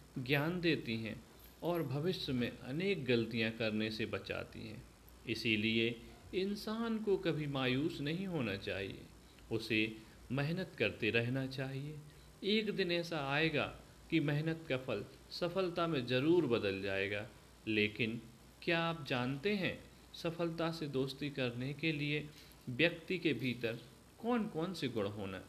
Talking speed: 135 wpm